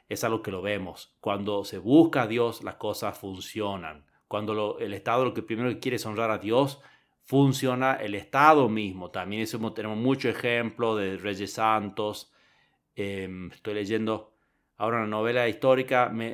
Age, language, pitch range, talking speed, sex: 30-49, Spanish, 100-130 Hz, 165 wpm, male